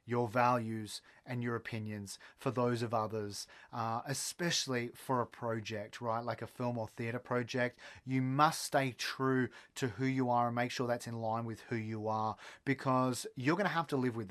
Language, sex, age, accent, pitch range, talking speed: English, male, 30-49, Australian, 115-145 Hz, 195 wpm